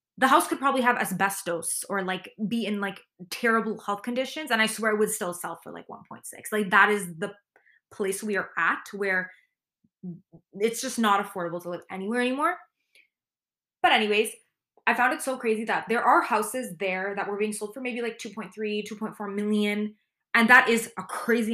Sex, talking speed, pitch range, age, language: female, 190 wpm, 200-245 Hz, 20-39, English